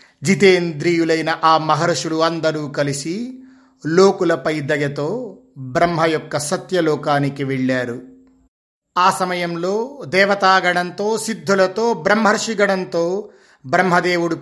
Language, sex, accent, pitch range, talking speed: Telugu, male, native, 155-195 Hz, 75 wpm